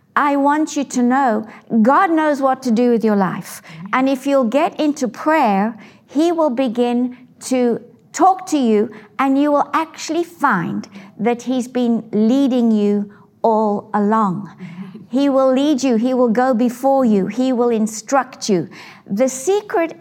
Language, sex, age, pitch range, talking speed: English, female, 60-79, 220-285 Hz, 160 wpm